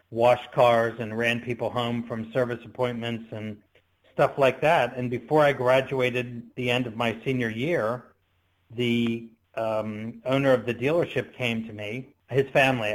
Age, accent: 50-69, American